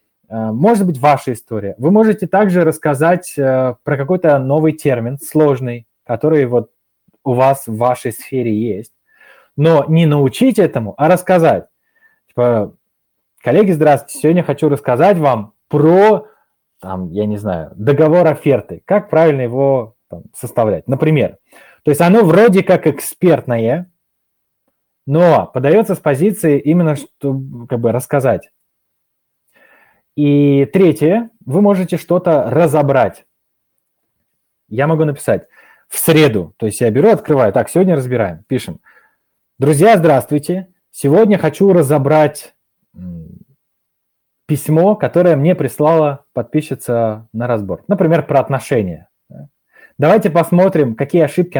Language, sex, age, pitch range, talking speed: Russian, male, 20-39, 130-170 Hz, 120 wpm